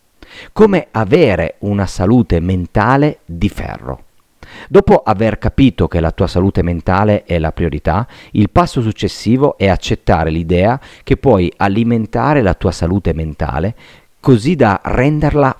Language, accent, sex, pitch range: Italian, native, male, 85-110 Hz